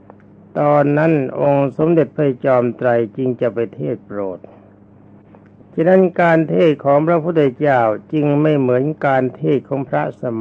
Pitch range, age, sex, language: 100-150 Hz, 60-79, male, Thai